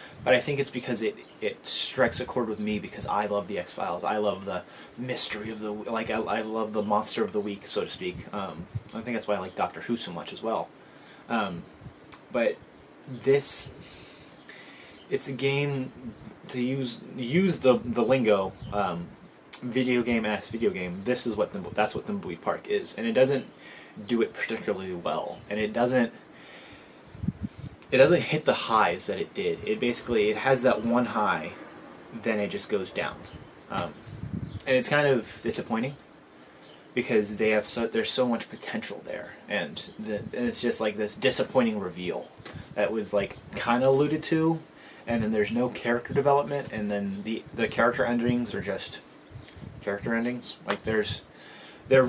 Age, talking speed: 20-39, 180 wpm